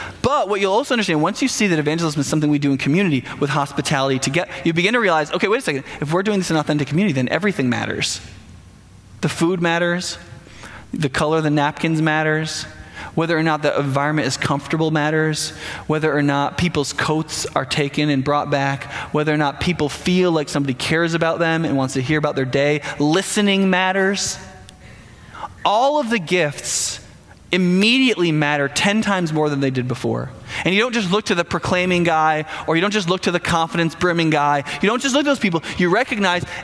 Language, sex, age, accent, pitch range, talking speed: English, male, 20-39, American, 145-190 Hz, 205 wpm